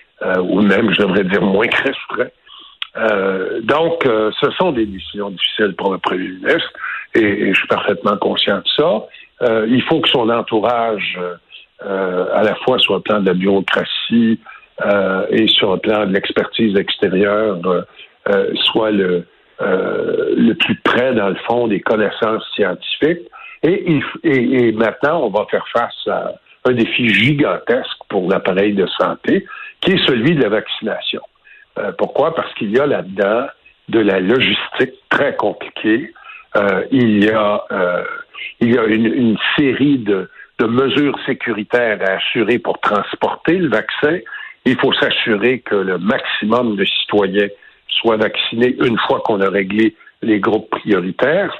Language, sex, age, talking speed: French, male, 60-79, 160 wpm